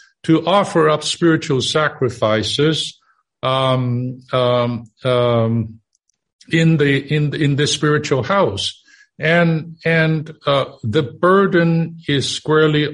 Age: 50-69